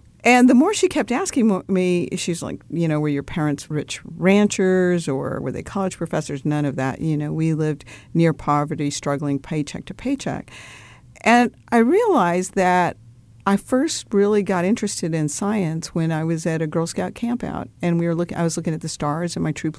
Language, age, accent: English, 50-69, American